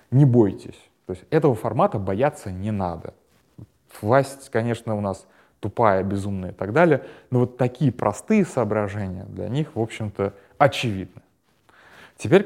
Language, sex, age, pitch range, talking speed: Russian, male, 20-39, 95-125 Hz, 140 wpm